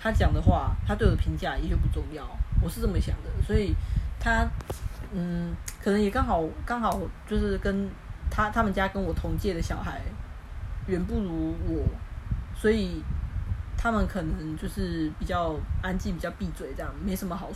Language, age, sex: Chinese, 20-39, female